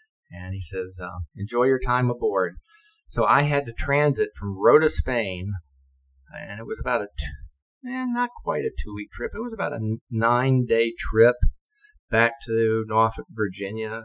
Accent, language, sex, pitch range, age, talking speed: American, English, male, 85-125 Hz, 50-69, 160 wpm